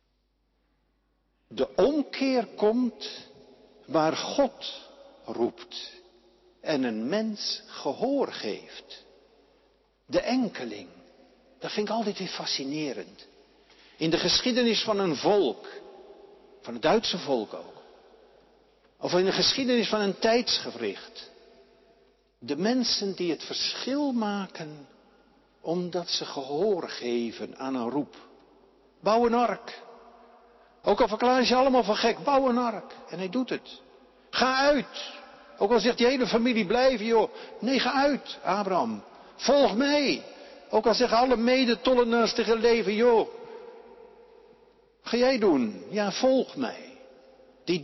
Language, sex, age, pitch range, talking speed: Dutch, male, 60-79, 200-280 Hz, 125 wpm